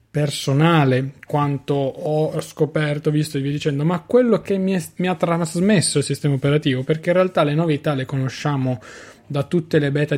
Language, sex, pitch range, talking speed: Italian, male, 140-160 Hz, 175 wpm